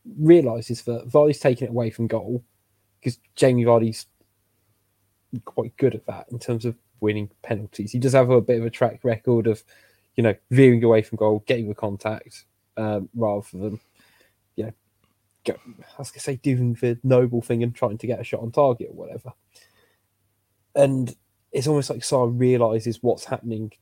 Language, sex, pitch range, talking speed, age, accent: English, male, 105-125 Hz, 175 wpm, 10-29, British